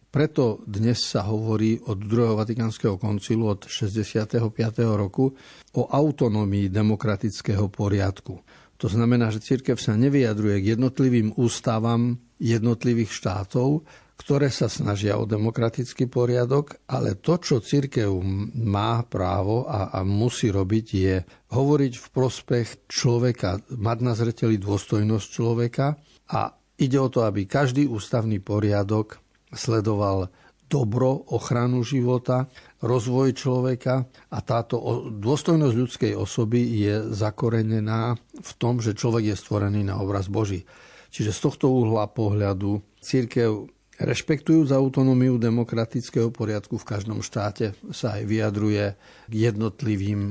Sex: male